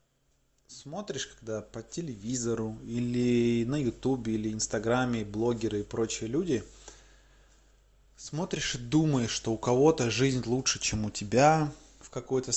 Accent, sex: native, male